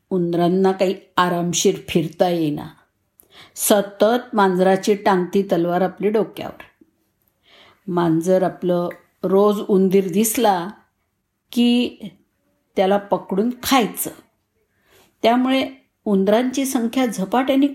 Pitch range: 175-245 Hz